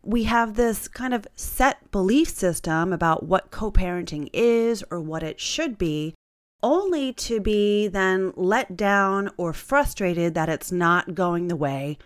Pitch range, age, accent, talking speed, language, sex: 165-230 Hz, 30-49, American, 155 wpm, English, female